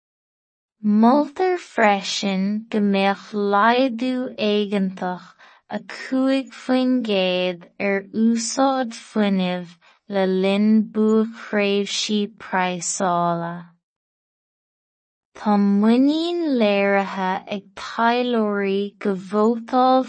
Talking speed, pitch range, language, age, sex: 65 wpm, 195-230 Hz, English, 20-39, female